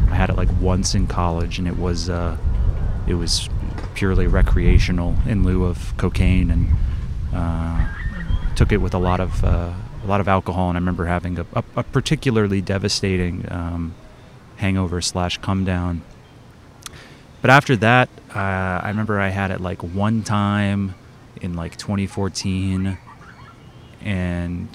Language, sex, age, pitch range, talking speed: English, male, 30-49, 85-95 Hz, 150 wpm